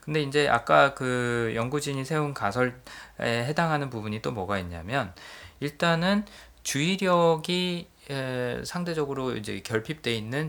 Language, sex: Korean, male